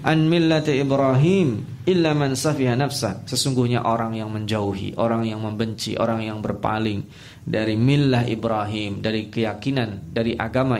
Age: 20-39